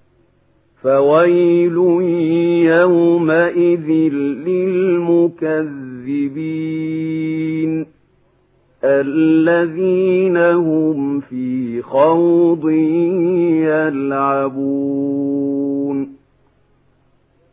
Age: 50-69